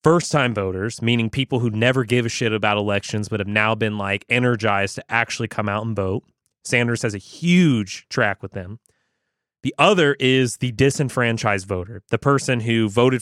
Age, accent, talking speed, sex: 30-49, American, 180 wpm, male